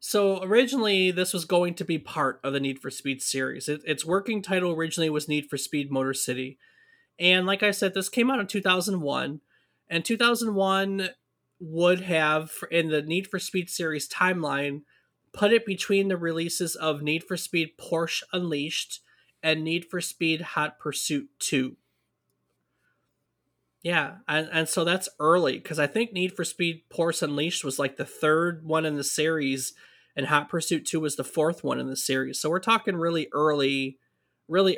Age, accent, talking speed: 30-49, American, 175 wpm